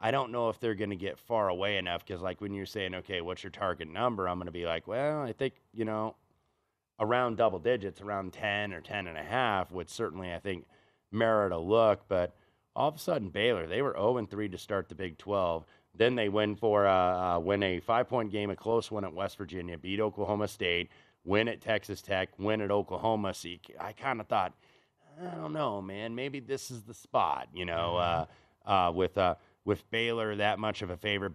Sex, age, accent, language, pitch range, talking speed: male, 30-49, American, English, 90-110 Hz, 230 wpm